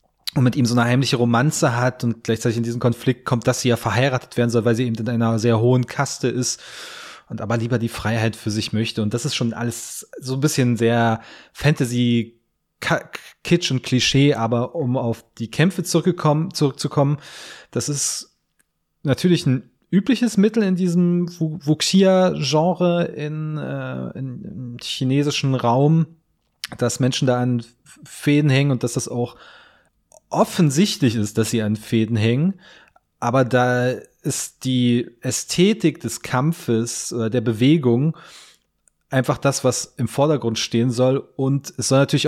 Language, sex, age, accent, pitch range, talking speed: German, male, 20-39, German, 120-150 Hz, 155 wpm